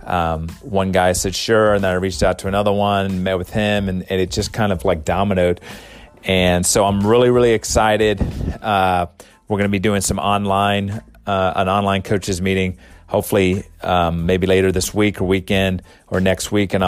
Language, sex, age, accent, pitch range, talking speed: English, male, 30-49, American, 90-100 Hz, 200 wpm